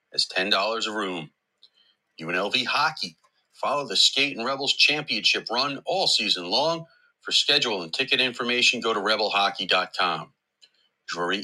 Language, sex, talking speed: English, male, 120 wpm